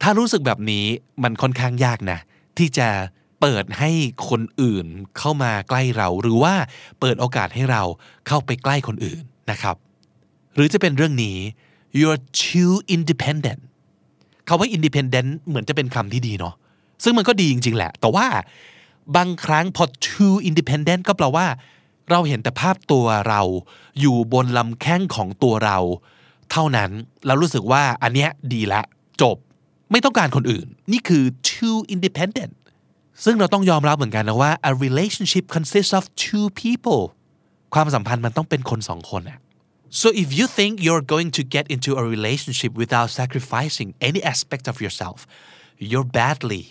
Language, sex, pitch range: Thai, male, 115-165 Hz